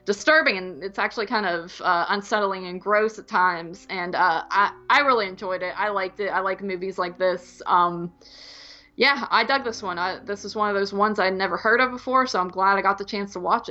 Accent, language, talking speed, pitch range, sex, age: American, English, 235 wpm, 185-235 Hz, female, 20-39